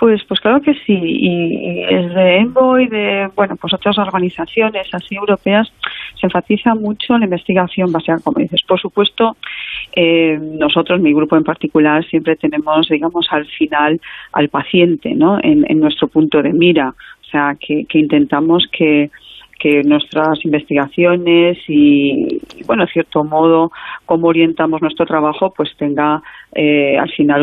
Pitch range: 155-205 Hz